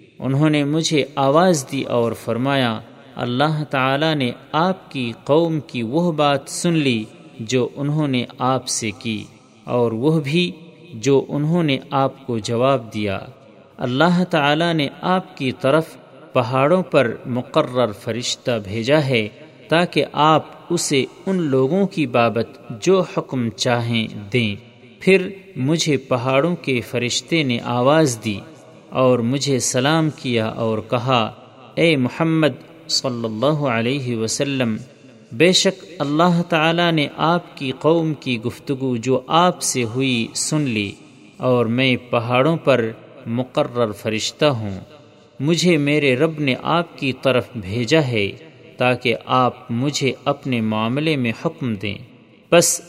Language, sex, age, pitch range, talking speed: Urdu, male, 40-59, 120-155 Hz, 135 wpm